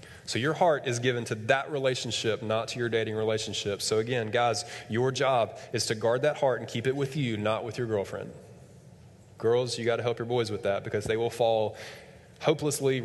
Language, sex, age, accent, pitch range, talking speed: English, male, 20-39, American, 110-140 Hz, 205 wpm